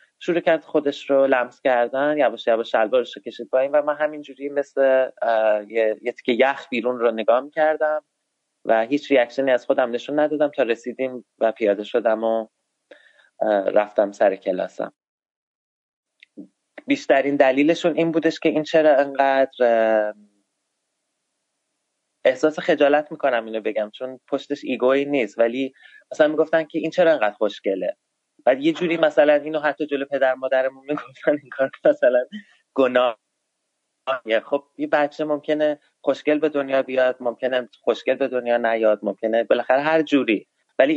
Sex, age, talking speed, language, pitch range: male, 30-49, 140 wpm, Persian, 120-155 Hz